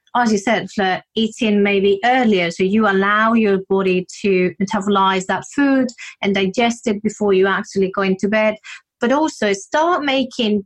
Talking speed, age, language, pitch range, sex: 160 wpm, 30-49, English, 190-230 Hz, female